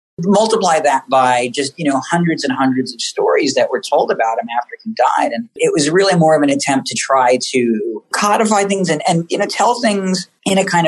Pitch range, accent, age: 130-210 Hz, American, 40-59